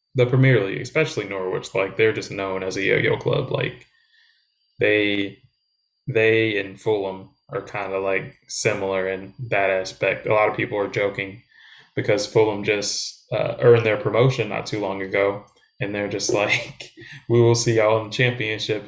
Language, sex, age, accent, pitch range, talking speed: English, male, 10-29, American, 105-125 Hz, 170 wpm